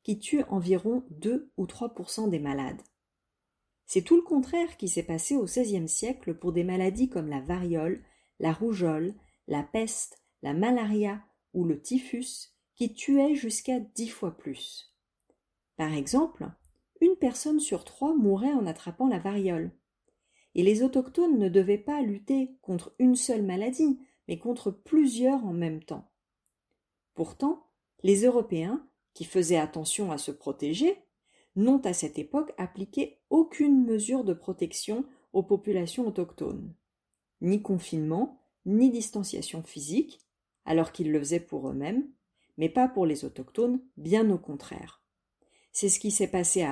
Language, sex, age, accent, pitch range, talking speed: French, female, 40-59, French, 175-260 Hz, 145 wpm